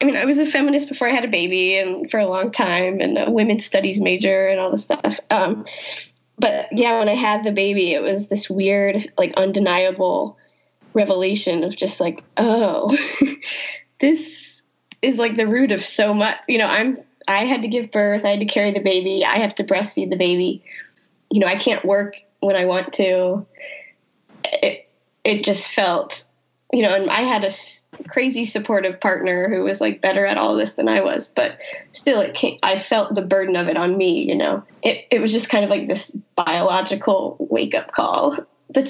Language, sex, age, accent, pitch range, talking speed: English, female, 10-29, American, 195-265 Hz, 200 wpm